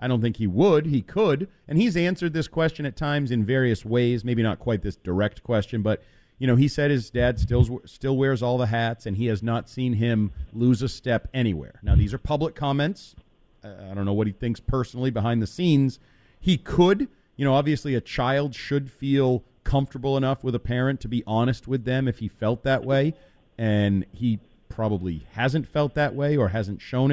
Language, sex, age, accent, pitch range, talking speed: English, male, 40-59, American, 115-145 Hz, 210 wpm